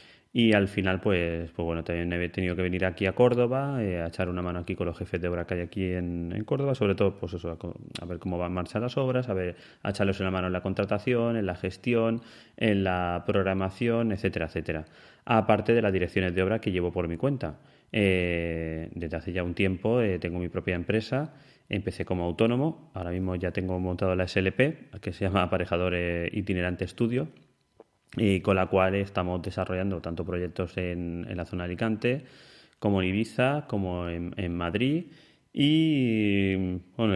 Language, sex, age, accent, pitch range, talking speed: Spanish, male, 20-39, Spanish, 90-110 Hz, 195 wpm